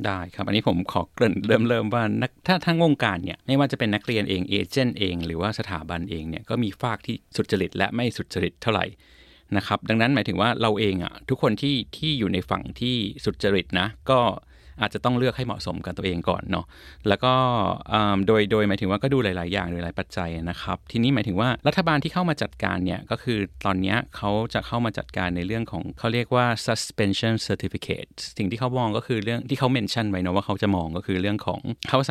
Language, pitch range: Thai, 90-120 Hz